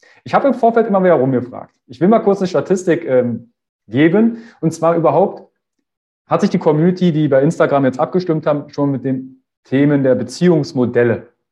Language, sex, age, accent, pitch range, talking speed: German, male, 40-59, German, 130-175 Hz, 175 wpm